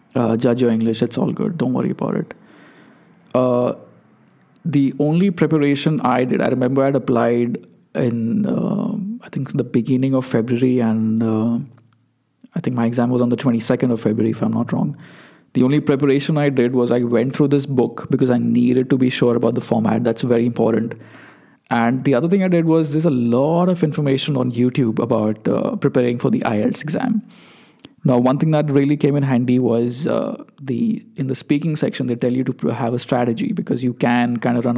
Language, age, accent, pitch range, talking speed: English, 20-39, Indian, 120-150 Hz, 200 wpm